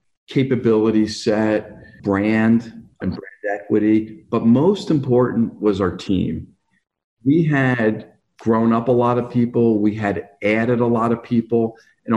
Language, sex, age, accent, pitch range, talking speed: English, male, 40-59, American, 100-120 Hz, 140 wpm